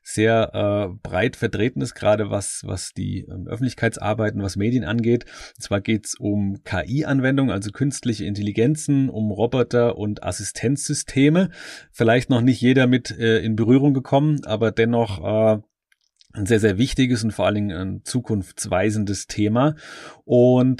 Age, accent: 30-49, German